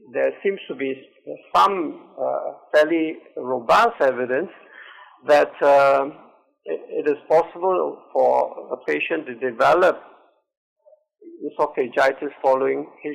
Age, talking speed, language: 60-79, 100 wpm, English